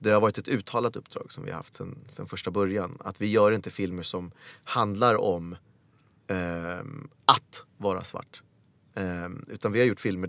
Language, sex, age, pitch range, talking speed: English, male, 30-49, 95-120 Hz, 185 wpm